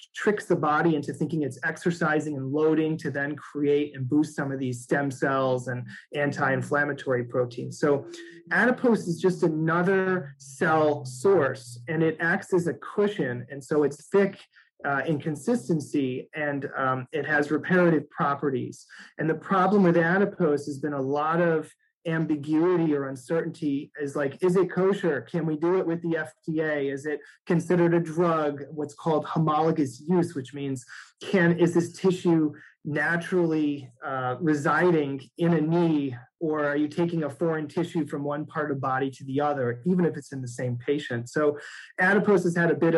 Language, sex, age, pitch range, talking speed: English, male, 30-49, 140-170 Hz, 170 wpm